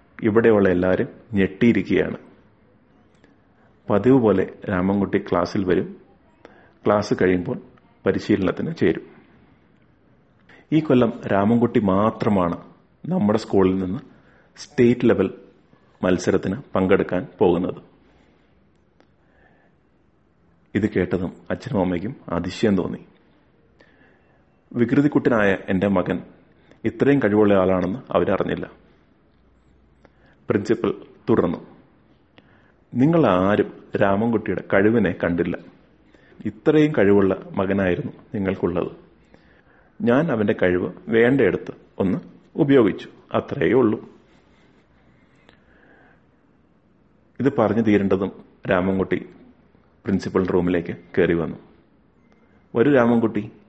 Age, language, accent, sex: 30-49, Malayalam, native, male